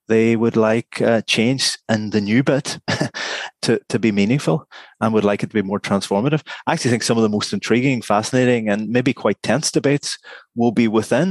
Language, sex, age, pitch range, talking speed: English, male, 30-49, 100-120 Hz, 200 wpm